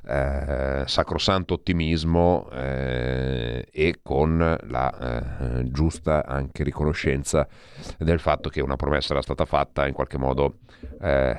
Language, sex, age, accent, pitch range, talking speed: Italian, male, 40-59, native, 65-75 Hz, 120 wpm